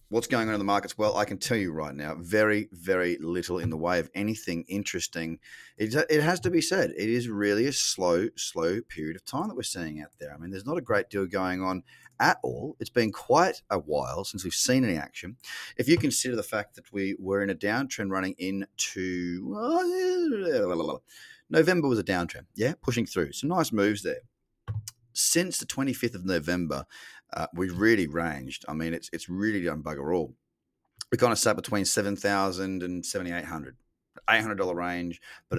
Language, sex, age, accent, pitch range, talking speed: English, male, 30-49, Australian, 90-120 Hz, 200 wpm